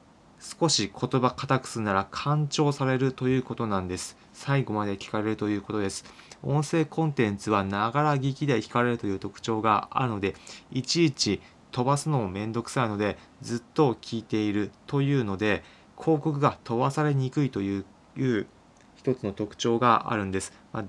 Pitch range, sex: 100-125 Hz, male